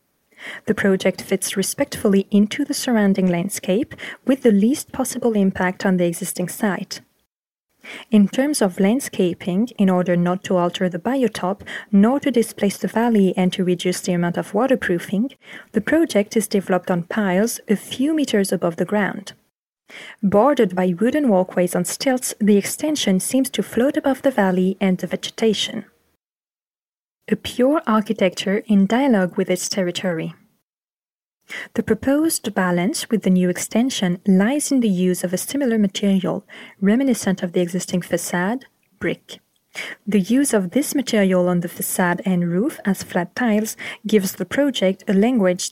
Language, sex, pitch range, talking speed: French, female, 185-230 Hz, 150 wpm